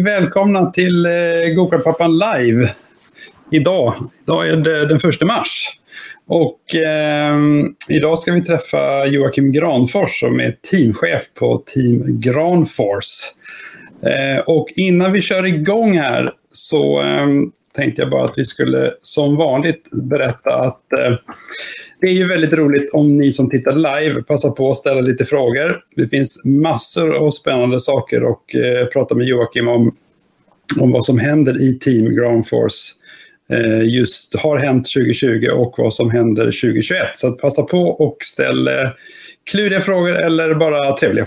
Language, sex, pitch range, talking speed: Swedish, male, 125-165 Hz, 140 wpm